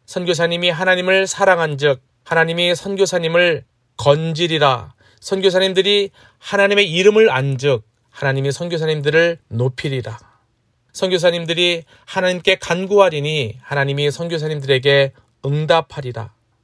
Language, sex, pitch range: Korean, male, 130-180 Hz